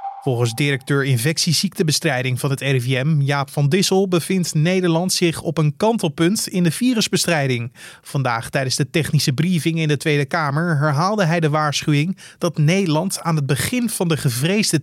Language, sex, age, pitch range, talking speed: Dutch, male, 30-49, 140-175 Hz, 160 wpm